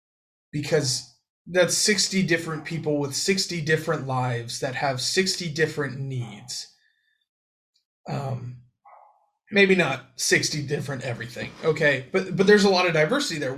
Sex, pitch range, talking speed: male, 140-180 Hz, 130 wpm